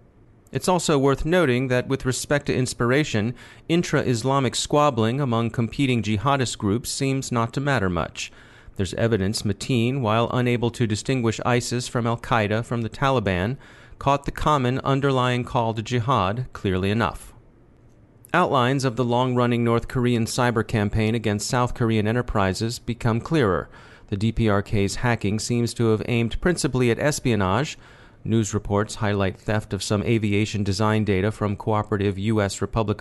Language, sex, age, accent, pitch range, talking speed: English, male, 40-59, American, 105-125 Hz, 140 wpm